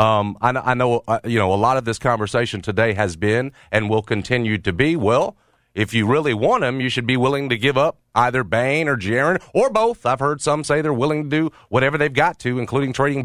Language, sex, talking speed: English, male, 240 wpm